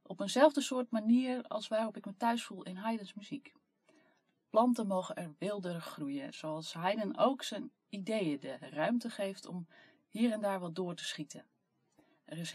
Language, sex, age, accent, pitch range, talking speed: Dutch, female, 30-49, Dutch, 175-235 Hz, 170 wpm